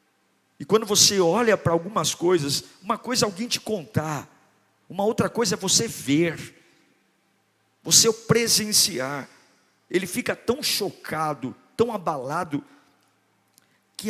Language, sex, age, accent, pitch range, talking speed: Portuguese, male, 50-69, Brazilian, 155-235 Hz, 125 wpm